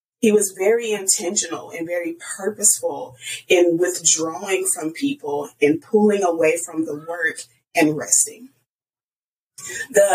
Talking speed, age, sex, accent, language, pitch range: 120 wpm, 30-49, female, American, English, 160-240 Hz